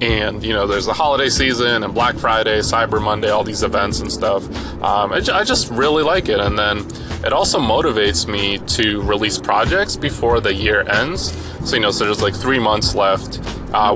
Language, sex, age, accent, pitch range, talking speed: English, male, 20-39, American, 100-110 Hz, 200 wpm